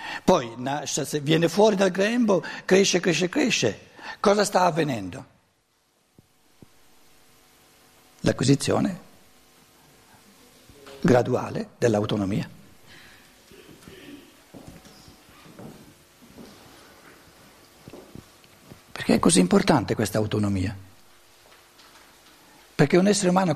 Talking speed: 60 wpm